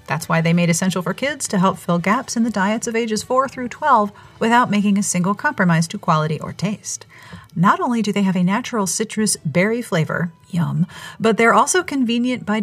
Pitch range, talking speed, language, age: 165-215 Hz, 210 wpm, English, 40-59